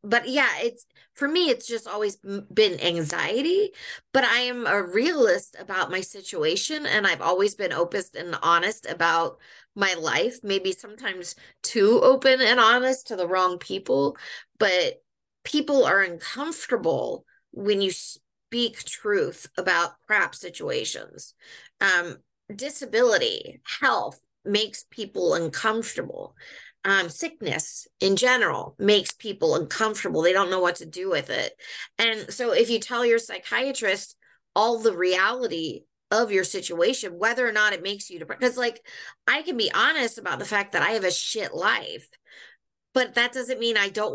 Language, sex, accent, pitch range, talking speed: English, female, American, 195-275 Hz, 150 wpm